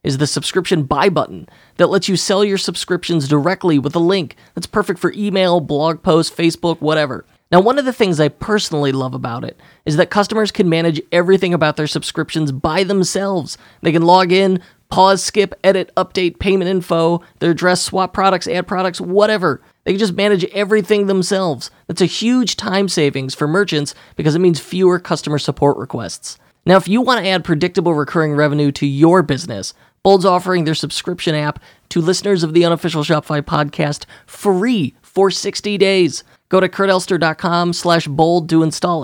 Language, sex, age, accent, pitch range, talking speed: English, male, 20-39, American, 150-190 Hz, 175 wpm